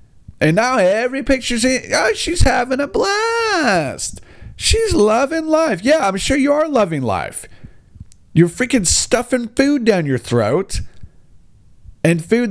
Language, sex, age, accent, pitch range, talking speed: English, male, 40-59, American, 125-195 Hz, 140 wpm